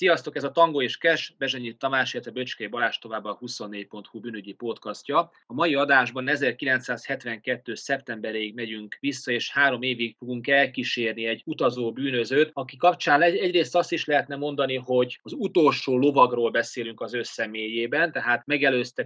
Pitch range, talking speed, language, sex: 120-150 Hz, 150 wpm, Hungarian, male